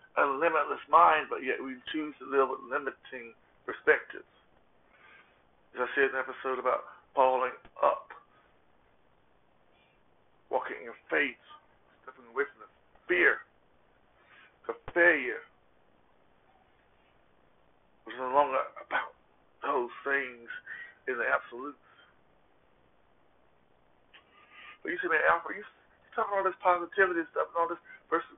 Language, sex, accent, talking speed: English, male, American, 120 wpm